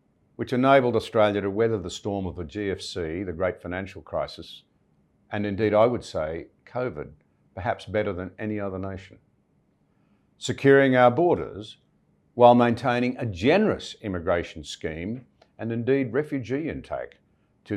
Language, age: English, 50-69